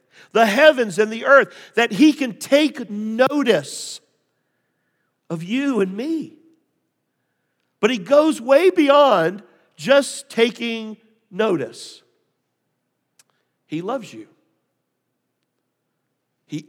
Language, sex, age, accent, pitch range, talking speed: English, male, 50-69, American, 175-255 Hz, 95 wpm